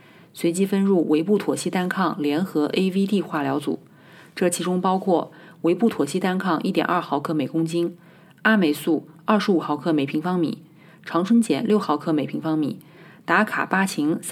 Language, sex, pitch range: Chinese, female, 155-190 Hz